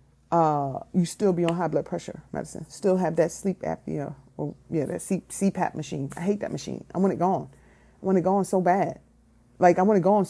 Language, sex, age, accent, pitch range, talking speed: English, female, 30-49, American, 165-220 Hz, 235 wpm